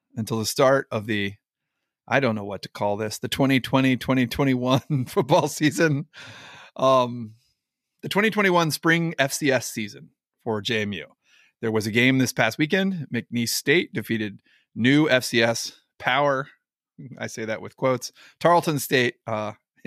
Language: English